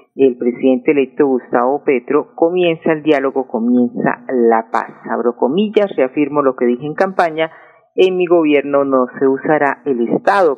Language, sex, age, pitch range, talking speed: Spanish, female, 40-59, 125-165 Hz, 155 wpm